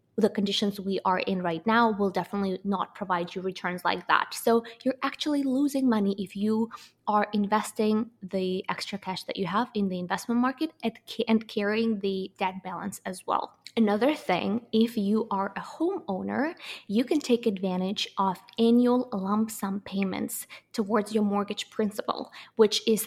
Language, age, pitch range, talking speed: English, 20-39, 195-230 Hz, 165 wpm